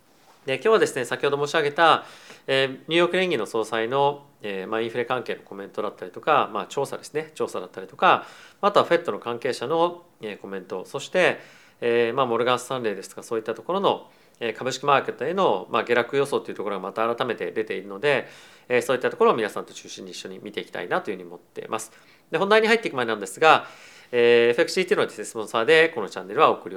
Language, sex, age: Japanese, male, 40-59